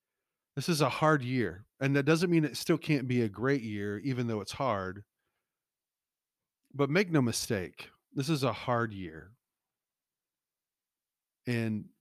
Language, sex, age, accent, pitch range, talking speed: English, male, 40-59, American, 100-130 Hz, 150 wpm